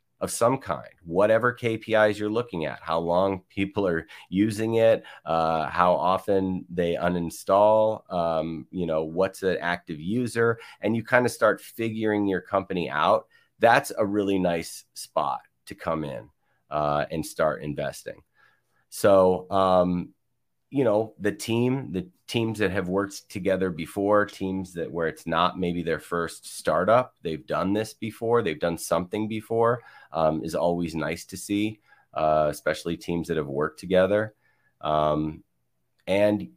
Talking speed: 155 wpm